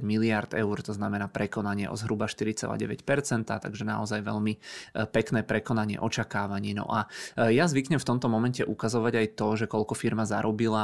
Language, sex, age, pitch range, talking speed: Czech, male, 20-39, 110-115 Hz, 155 wpm